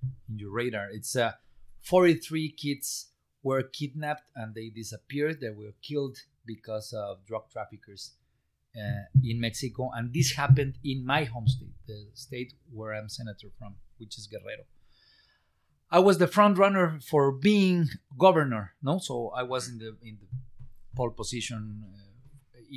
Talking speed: 150 wpm